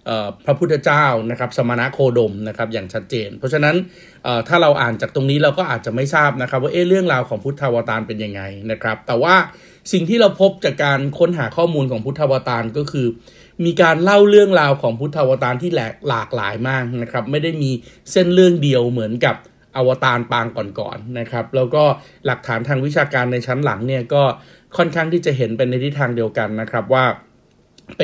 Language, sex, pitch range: Thai, male, 120-150 Hz